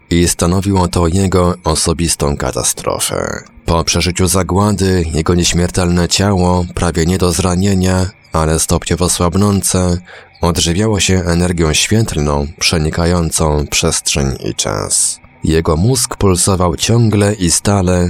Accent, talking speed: native, 110 wpm